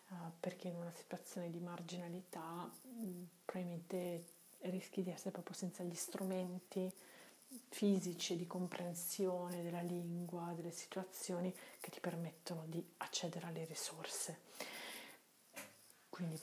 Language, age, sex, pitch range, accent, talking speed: Italian, 30-49, female, 170-195 Hz, native, 105 wpm